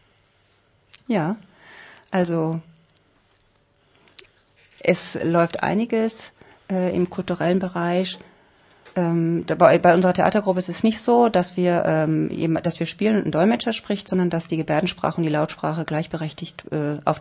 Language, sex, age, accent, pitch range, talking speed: German, female, 40-59, German, 150-185 Hz, 135 wpm